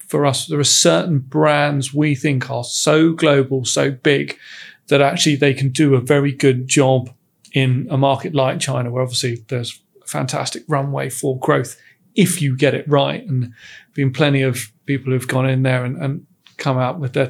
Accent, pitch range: British, 135-155 Hz